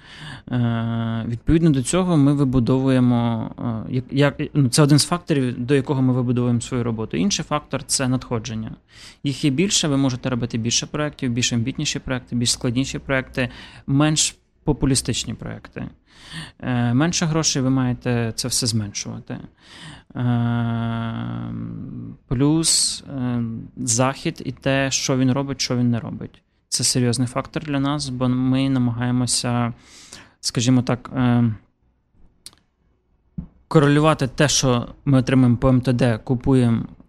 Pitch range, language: 120-145 Hz, Ukrainian